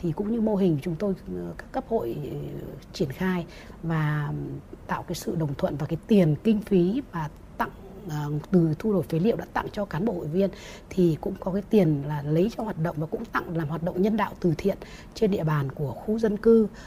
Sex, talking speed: female, 230 wpm